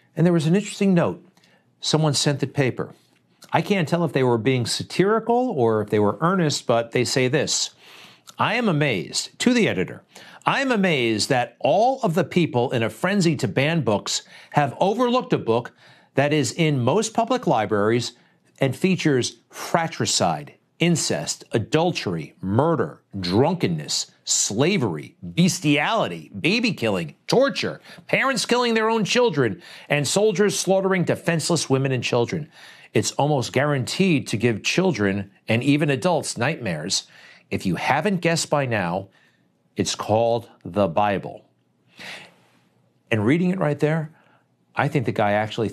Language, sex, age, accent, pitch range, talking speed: English, male, 50-69, American, 110-175 Hz, 145 wpm